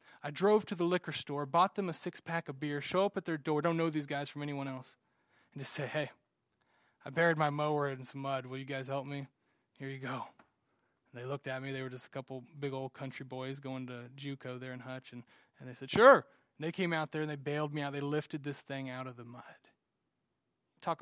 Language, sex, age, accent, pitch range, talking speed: English, male, 20-39, American, 140-190 Hz, 250 wpm